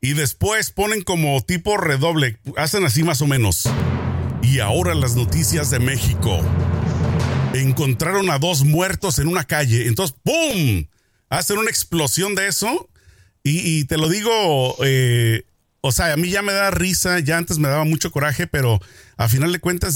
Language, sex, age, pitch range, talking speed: Spanish, male, 40-59, 115-170 Hz, 170 wpm